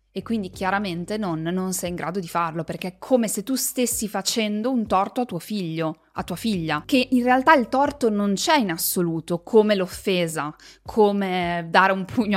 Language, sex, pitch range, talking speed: Italian, female, 175-230 Hz, 195 wpm